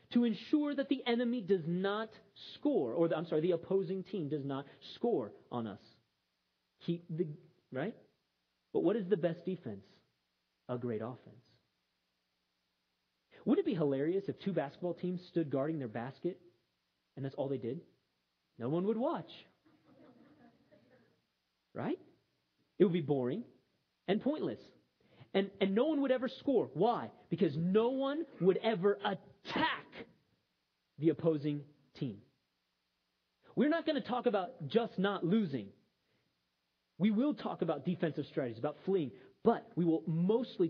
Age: 40-59